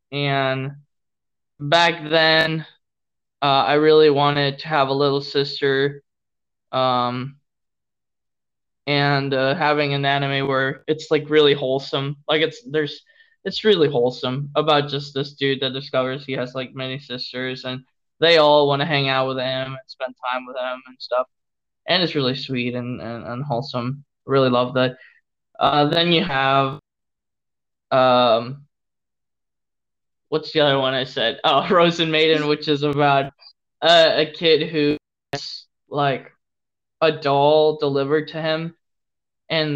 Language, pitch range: English, 135-150 Hz